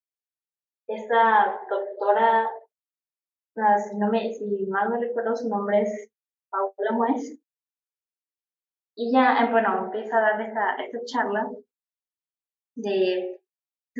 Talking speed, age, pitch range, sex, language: 115 wpm, 20-39, 200-230 Hz, female, Spanish